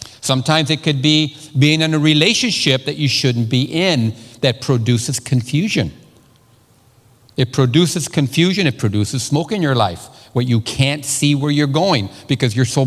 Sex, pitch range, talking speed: male, 120-155 Hz, 165 wpm